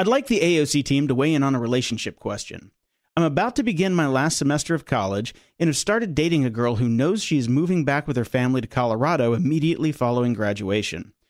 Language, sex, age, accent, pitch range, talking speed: English, male, 40-59, American, 120-170 Hz, 210 wpm